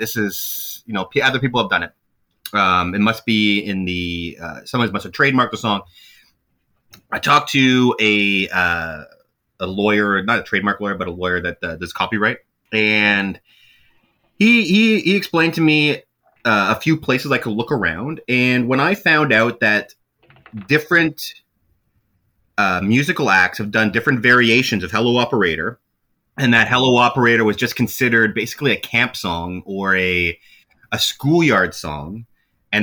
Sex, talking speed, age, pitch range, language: male, 165 wpm, 30-49, 105-130 Hz, English